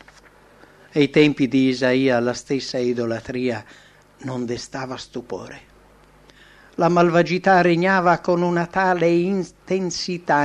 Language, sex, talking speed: English, male, 105 wpm